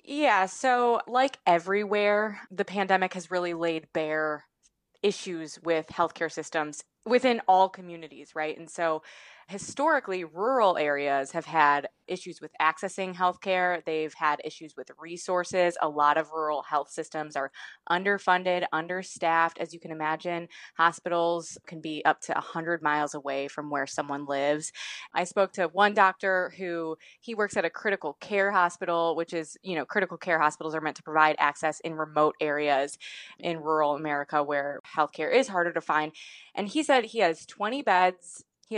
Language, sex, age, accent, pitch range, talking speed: English, female, 20-39, American, 155-190 Hz, 160 wpm